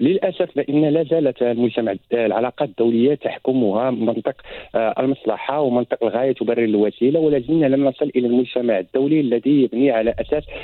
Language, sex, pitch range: French, male, 120-145 Hz